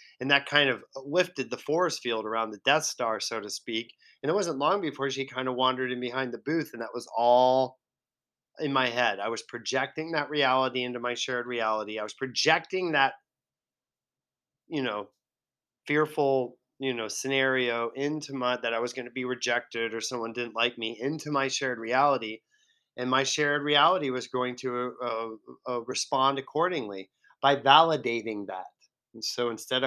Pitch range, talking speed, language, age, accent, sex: 120-145 Hz, 180 wpm, English, 30-49, American, male